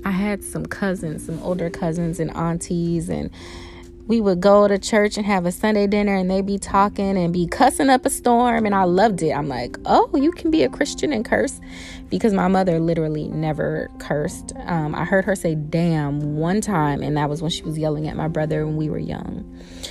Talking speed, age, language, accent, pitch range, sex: 215 wpm, 30-49, English, American, 155-195 Hz, female